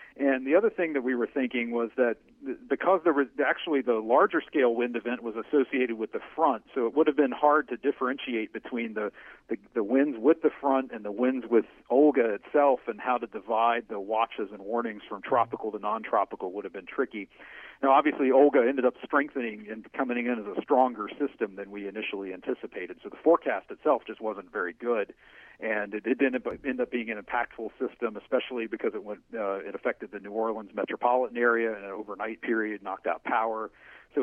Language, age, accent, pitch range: English, 50-69, American, 110-135 Hz